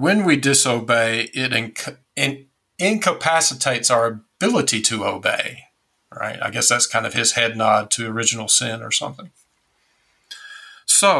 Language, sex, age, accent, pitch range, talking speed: English, male, 50-69, American, 115-145 Hz, 130 wpm